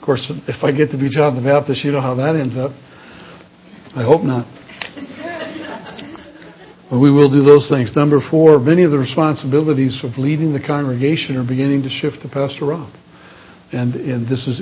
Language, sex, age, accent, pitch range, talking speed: English, male, 60-79, American, 125-145 Hz, 190 wpm